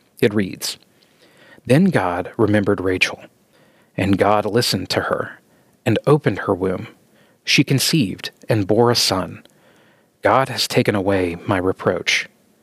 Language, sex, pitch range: English, male, 100-120 Hz